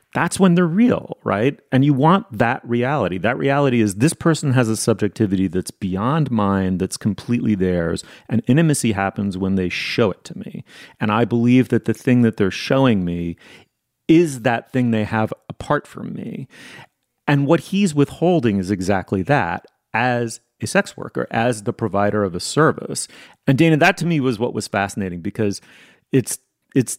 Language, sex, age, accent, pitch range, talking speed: English, male, 30-49, American, 100-135 Hz, 180 wpm